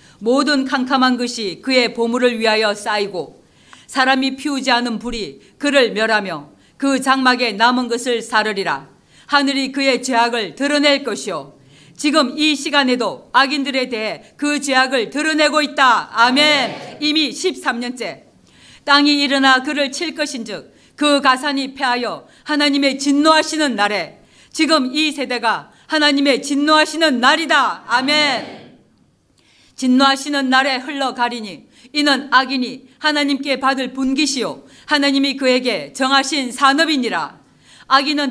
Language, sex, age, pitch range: Korean, female, 40-59, 245-290 Hz